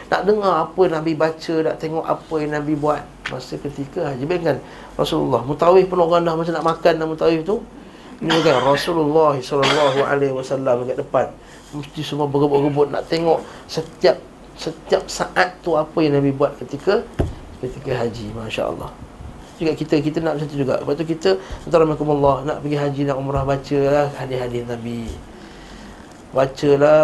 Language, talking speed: Malay, 155 wpm